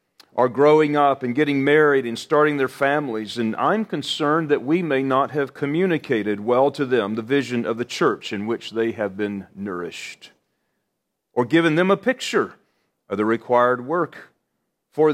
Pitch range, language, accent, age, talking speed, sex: 115-150 Hz, English, American, 40-59, 170 wpm, male